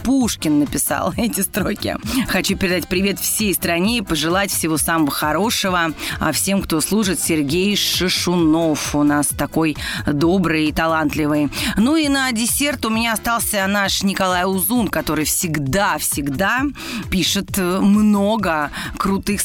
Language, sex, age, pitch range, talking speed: Russian, female, 30-49, 160-200 Hz, 125 wpm